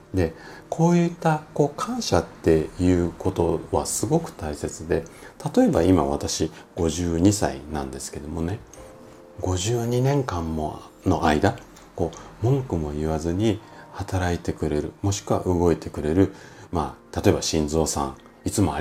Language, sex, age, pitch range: Japanese, male, 40-59, 80-125 Hz